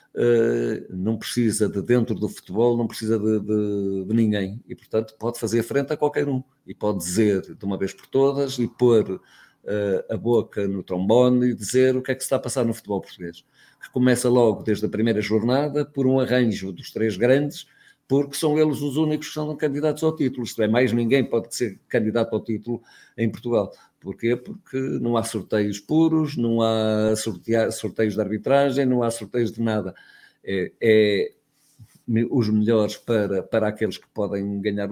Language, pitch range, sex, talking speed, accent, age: Portuguese, 105-130 Hz, male, 180 wpm, Portuguese, 50-69